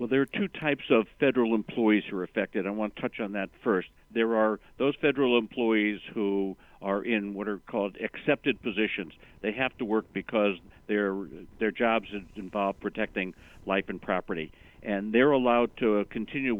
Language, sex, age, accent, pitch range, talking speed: English, male, 60-79, American, 95-115 Hz, 175 wpm